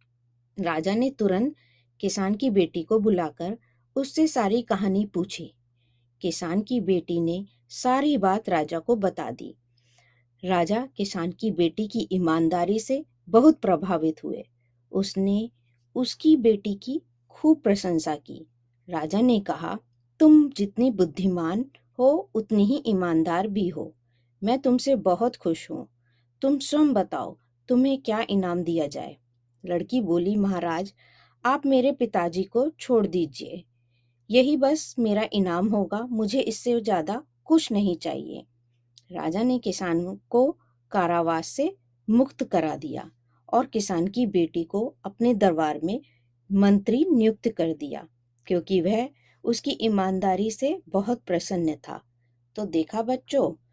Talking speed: 130 wpm